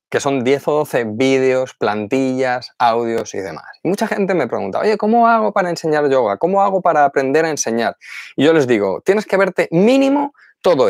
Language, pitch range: Spanish, 115-190 Hz